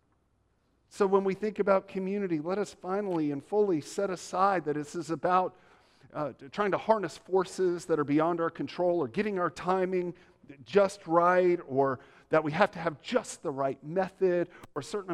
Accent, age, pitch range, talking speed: American, 50-69, 130-180 Hz, 180 wpm